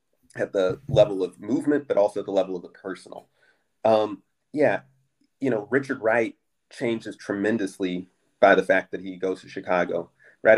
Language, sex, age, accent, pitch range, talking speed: English, male, 30-49, American, 95-120 Hz, 170 wpm